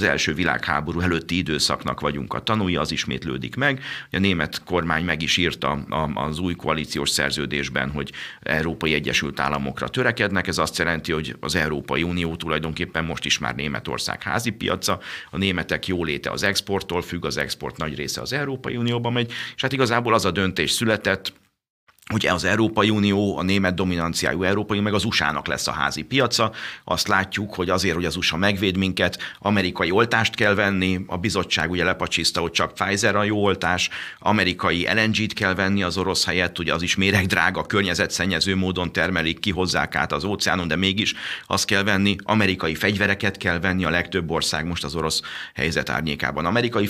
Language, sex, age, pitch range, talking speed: Hungarian, male, 50-69, 80-100 Hz, 175 wpm